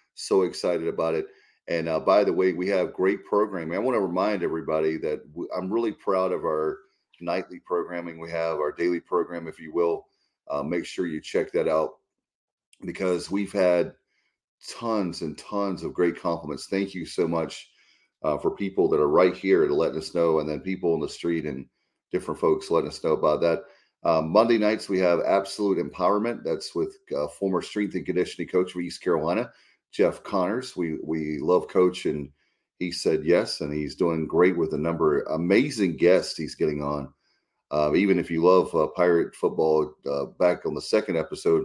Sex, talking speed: male, 195 wpm